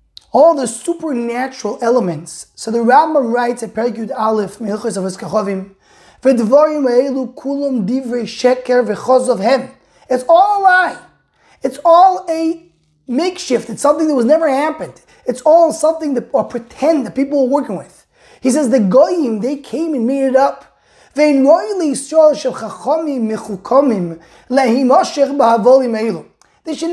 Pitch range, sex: 230-300 Hz, male